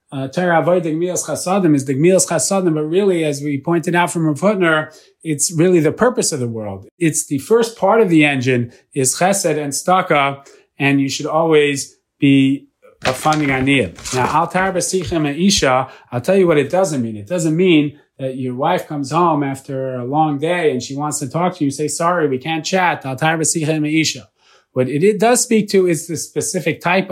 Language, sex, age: English, male, 30-49